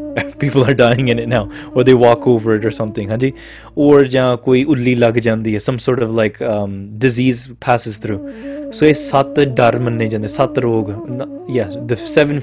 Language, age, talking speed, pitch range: English, 20-39, 125 wpm, 120-155 Hz